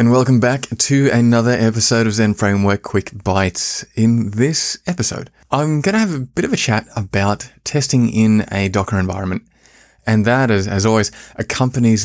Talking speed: 170 wpm